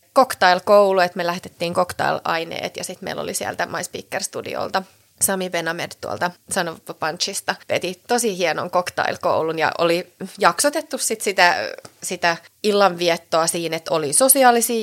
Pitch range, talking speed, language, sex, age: 165-195 Hz, 125 wpm, Finnish, female, 30-49